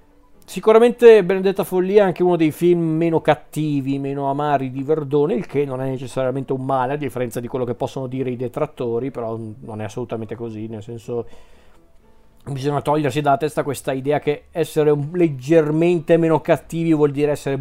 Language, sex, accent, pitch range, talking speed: Italian, male, native, 125-160 Hz, 175 wpm